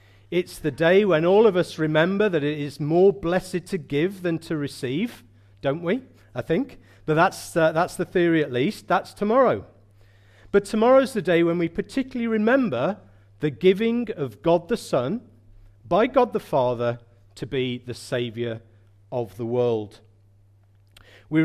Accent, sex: British, male